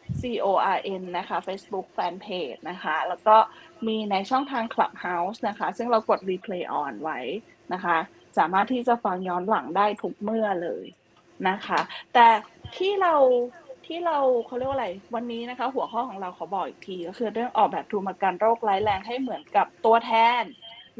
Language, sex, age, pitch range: Thai, female, 20-39, 195-245 Hz